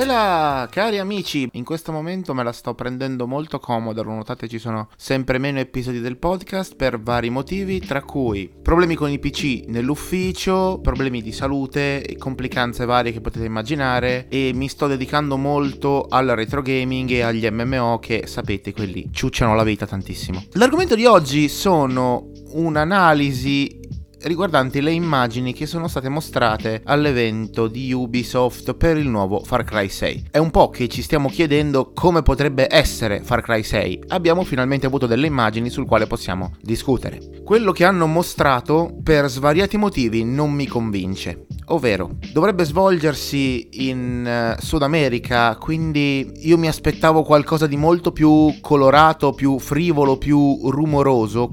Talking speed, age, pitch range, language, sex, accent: 150 wpm, 20-39, 120-155 Hz, Italian, male, native